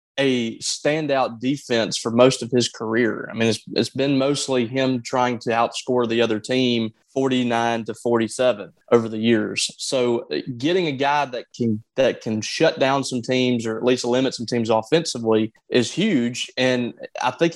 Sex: male